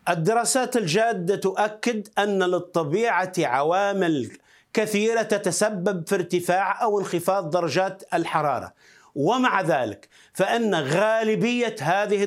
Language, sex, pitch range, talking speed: Arabic, male, 185-215 Hz, 95 wpm